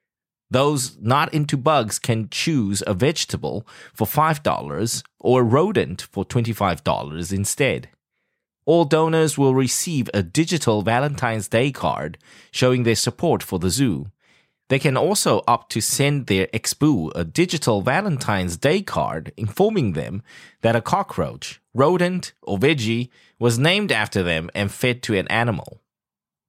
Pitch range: 95-140 Hz